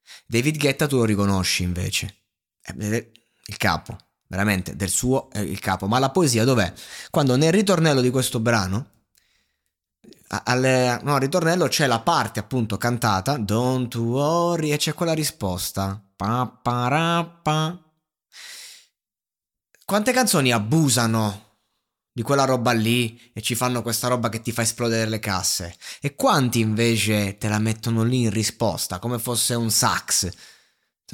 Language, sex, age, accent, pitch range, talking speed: Italian, male, 20-39, native, 110-160 Hz, 135 wpm